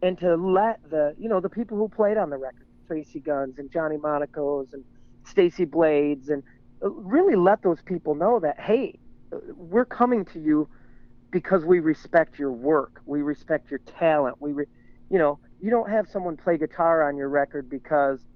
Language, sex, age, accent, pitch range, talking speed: English, male, 40-59, American, 140-180 Hz, 185 wpm